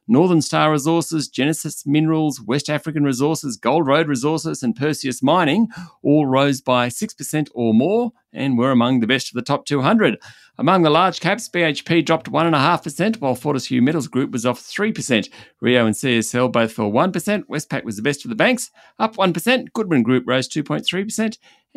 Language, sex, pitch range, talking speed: English, male, 120-175 Hz, 170 wpm